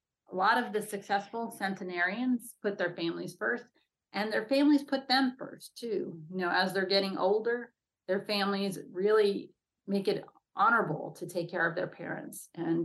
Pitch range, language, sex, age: 175-215 Hz, English, female, 30-49